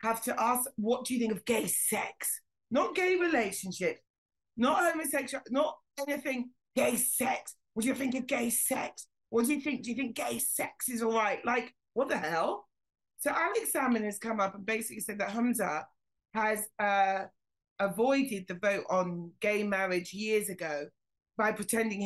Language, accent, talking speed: English, British, 175 wpm